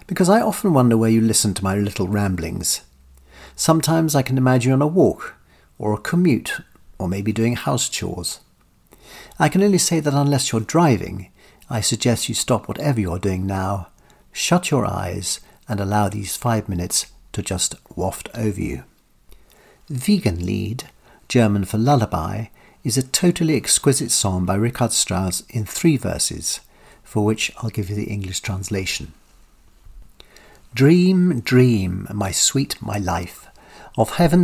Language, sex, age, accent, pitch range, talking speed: English, male, 50-69, British, 100-135 Hz, 155 wpm